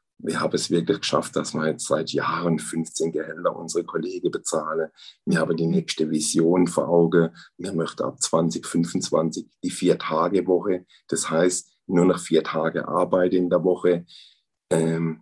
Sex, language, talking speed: male, German, 155 wpm